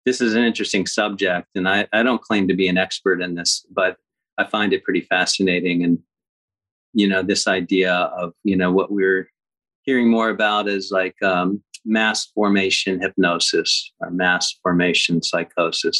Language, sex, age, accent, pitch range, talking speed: English, male, 40-59, American, 90-110 Hz, 170 wpm